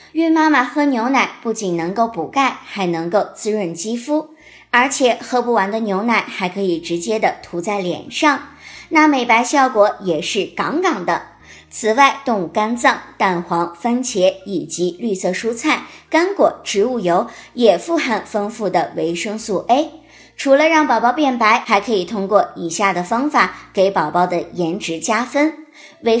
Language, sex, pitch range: Chinese, male, 195-275 Hz